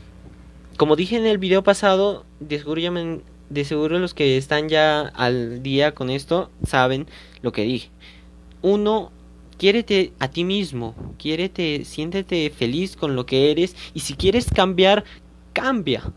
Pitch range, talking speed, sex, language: 135-190 Hz, 135 wpm, male, Spanish